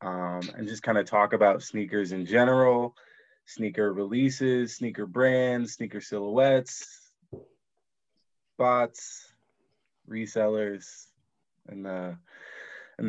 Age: 20-39